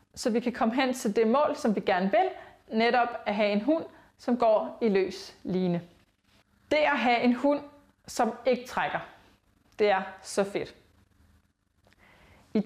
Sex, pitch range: female, 195-295 Hz